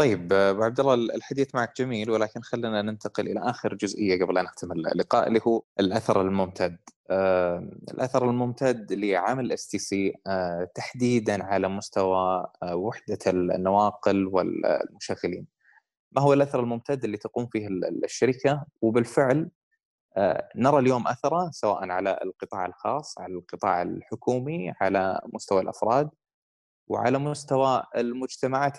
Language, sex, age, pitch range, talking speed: Arabic, male, 20-39, 100-135 Hz, 120 wpm